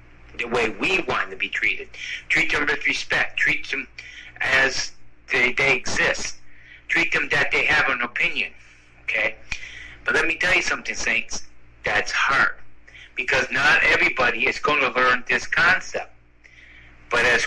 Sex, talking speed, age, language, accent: male, 155 wpm, 60-79, English, American